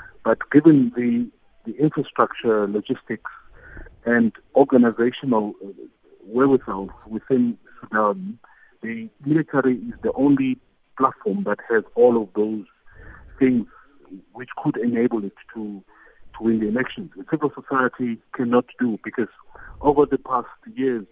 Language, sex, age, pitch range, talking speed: English, male, 50-69, 110-160 Hz, 120 wpm